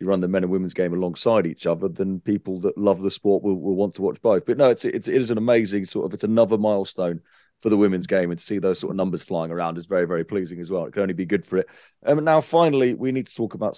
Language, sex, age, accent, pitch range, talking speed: English, male, 30-49, British, 85-115 Hz, 305 wpm